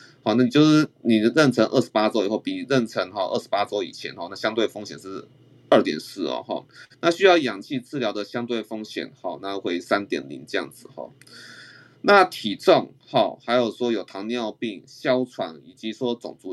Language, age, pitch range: Chinese, 20-39, 105-135 Hz